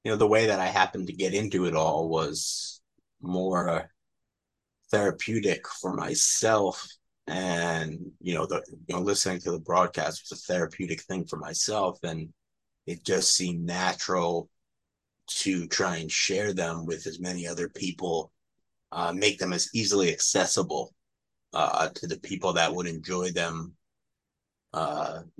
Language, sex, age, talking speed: English, male, 30-49, 150 wpm